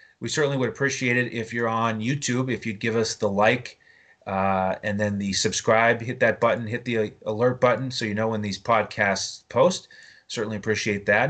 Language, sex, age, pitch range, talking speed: English, male, 30-49, 110-140 Hz, 200 wpm